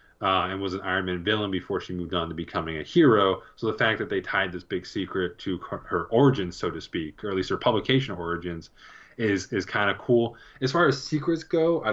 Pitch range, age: 95-125 Hz, 20-39